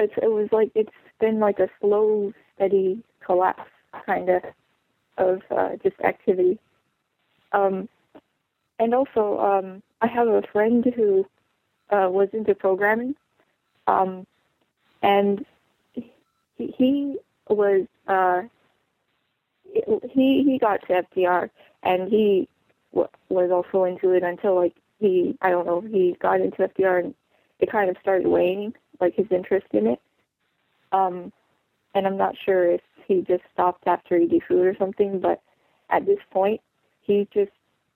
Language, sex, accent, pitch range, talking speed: English, female, American, 180-225 Hz, 145 wpm